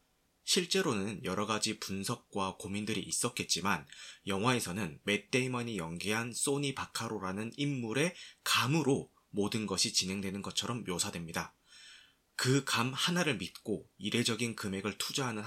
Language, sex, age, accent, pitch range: Korean, male, 30-49, native, 100-130 Hz